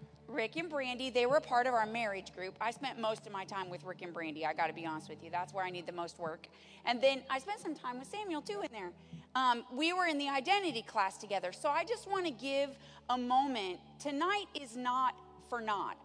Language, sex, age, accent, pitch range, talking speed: English, female, 40-59, American, 195-280 Hz, 245 wpm